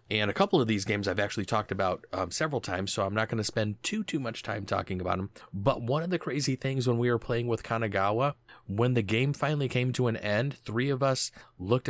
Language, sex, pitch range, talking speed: English, male, 95-125 Hz, 250 wpm